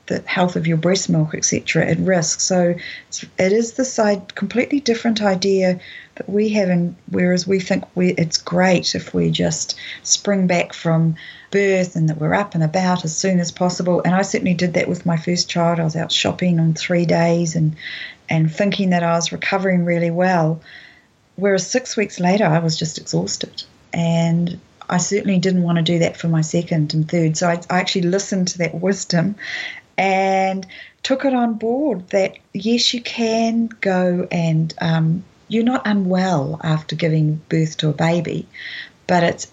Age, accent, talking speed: 40-59, Australian, 185 wpm